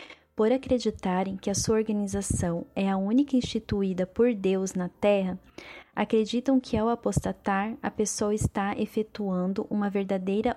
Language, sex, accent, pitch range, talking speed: Portuguese, female, Brazilian, 205-250 Hz, 135 wpm